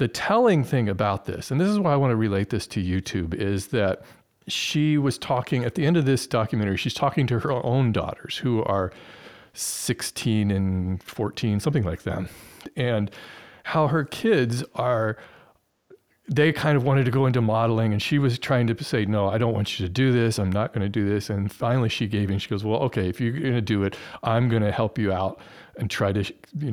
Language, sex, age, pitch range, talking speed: English, male, 40-59, 105-140 Hz, 220 wpm